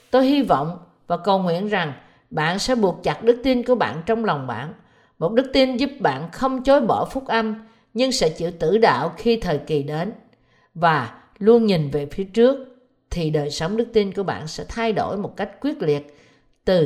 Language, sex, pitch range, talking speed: Vietnamese, female, 165-235 Hz, 205 wpm